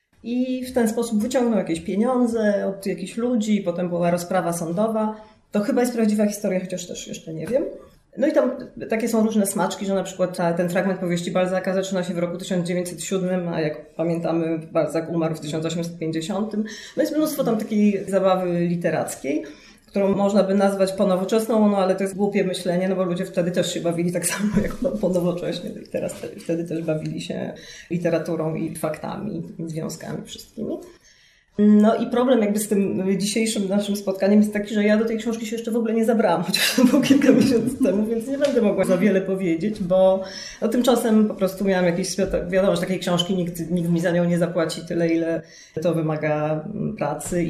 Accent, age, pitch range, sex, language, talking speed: native, 20-39, 175-215 Hz, female, Polish, 185 wpm